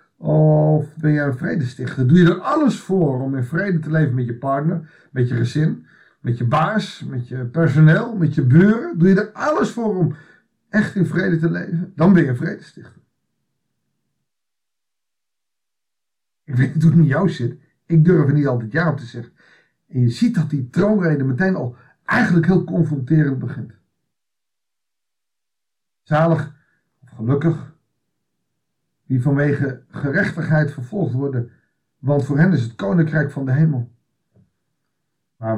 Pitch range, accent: 130-170 Hz, Dutch